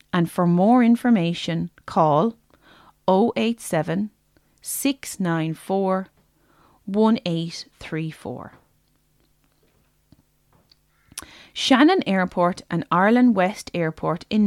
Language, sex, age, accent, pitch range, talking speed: English, female, 30-49, Irish, 165-210 Hz, 60 wpm